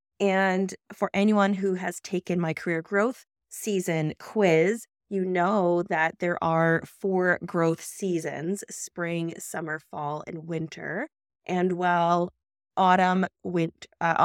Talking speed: 120 wpm